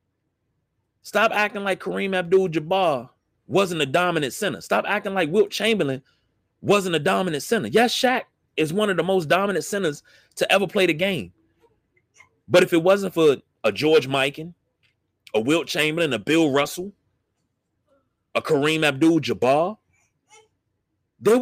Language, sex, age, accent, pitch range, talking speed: English, male, 30-49, American, 150-215 Hz, 140 wpm